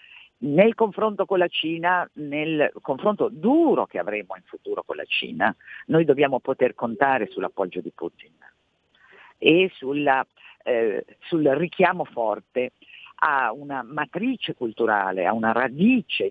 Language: Italian